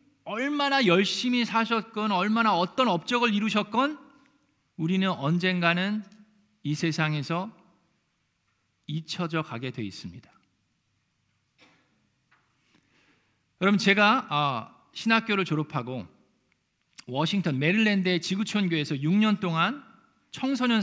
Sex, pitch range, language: male, 160-225 Hz, Korean